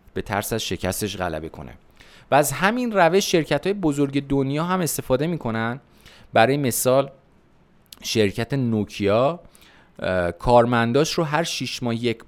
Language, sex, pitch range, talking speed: Persian, male, 100-140 Hz, 135 wpm